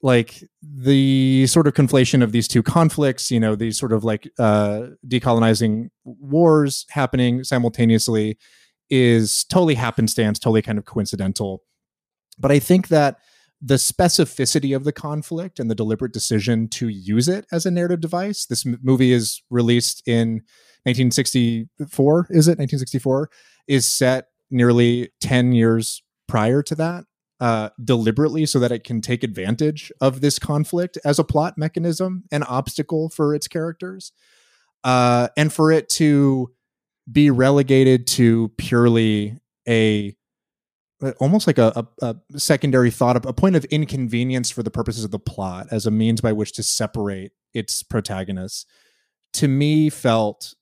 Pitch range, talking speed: 115-145 Hz, 145 wpm